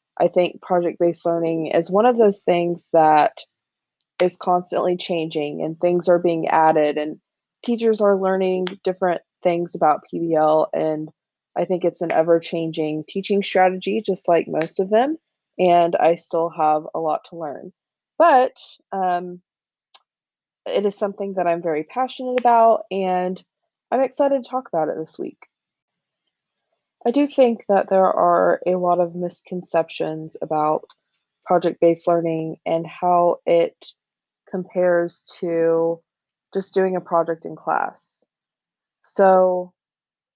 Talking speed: 135 wpm